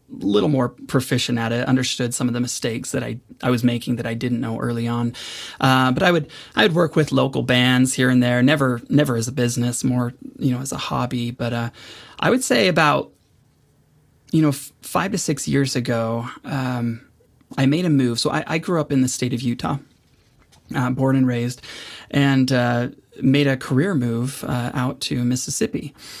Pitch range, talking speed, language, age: 120-140 Hz, 205 wpm, English, 30-49